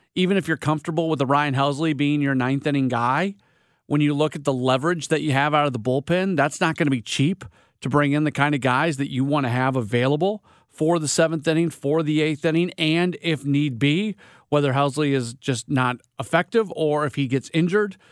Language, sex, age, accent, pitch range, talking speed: English, male, 40-59, American, 135-185 Hz, 225 wpm